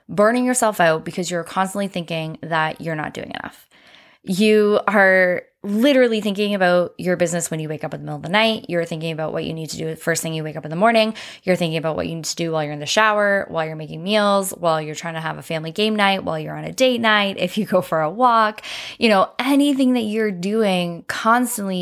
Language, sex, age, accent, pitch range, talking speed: English, female, 10-29, American, 170-220 Hz, 250 wpm